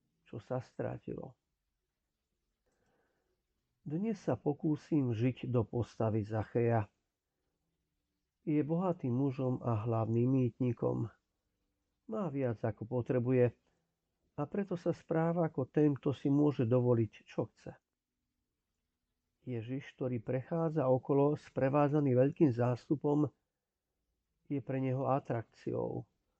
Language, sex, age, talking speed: Slovak, male, 50-69, 100 wpm